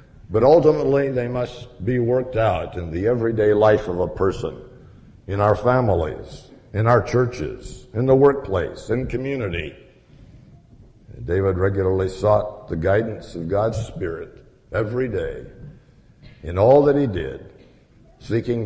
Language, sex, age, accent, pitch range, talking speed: English, male, 60-79, American, 85-115 Hz, 130 wpm